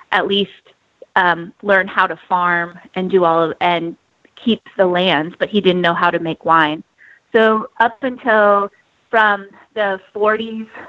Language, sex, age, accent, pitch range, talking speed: English, female, 30-49, American, 180-205 Hz, 160 wpm